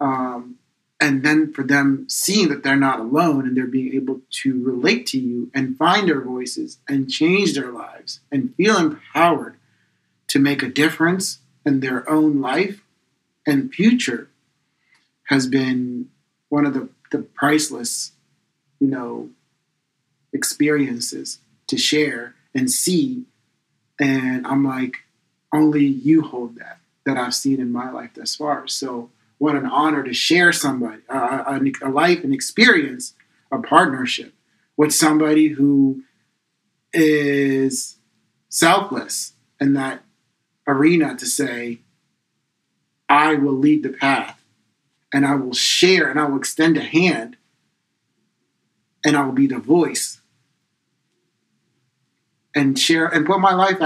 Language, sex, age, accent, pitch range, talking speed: English, male, 40-59, American, 130-155 Hz, 135 wpm